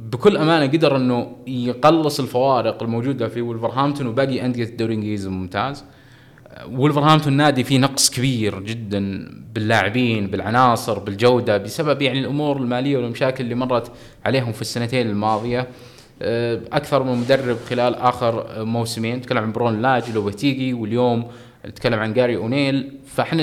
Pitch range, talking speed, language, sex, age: 115-140 Hz, 130 wpm, Arabic, male, 20-39